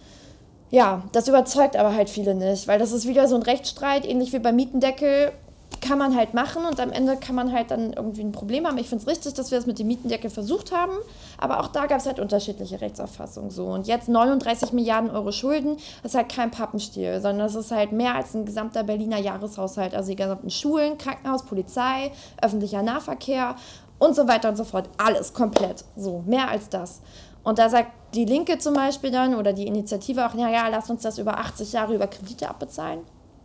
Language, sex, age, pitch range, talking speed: German, female, 20-39, 205-260 Hz, 210 wpm